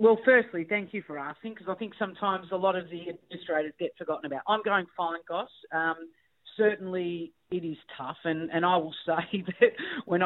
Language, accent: English, Australian